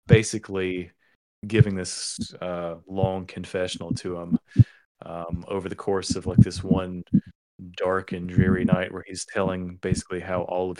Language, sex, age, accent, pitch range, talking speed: English, male, 30-49, American, 90-110 Hz, 150 wpm